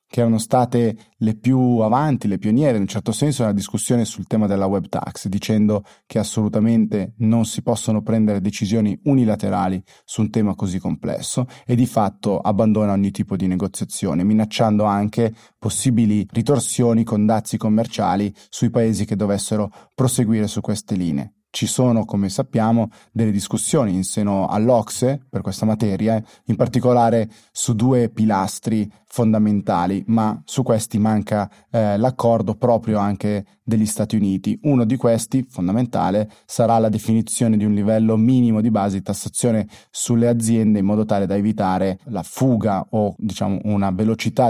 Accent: native